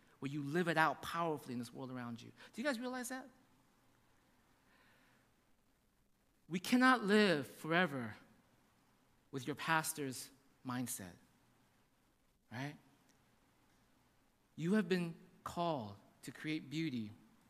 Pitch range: 160-245 Hz